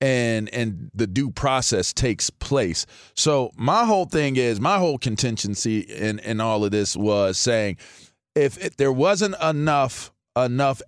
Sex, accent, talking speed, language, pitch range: male, American, 155 wpm, English, 115-155 Hz